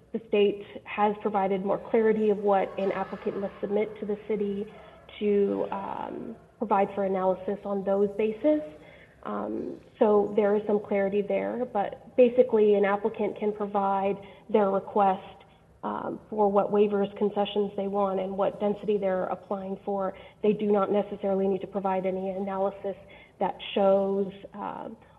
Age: 30-49